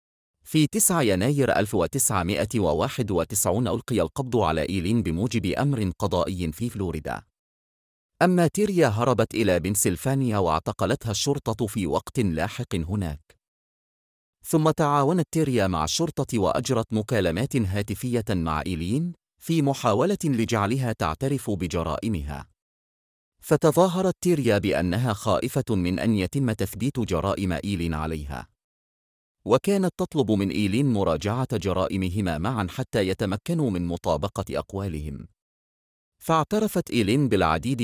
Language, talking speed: Arabic, 105 wpm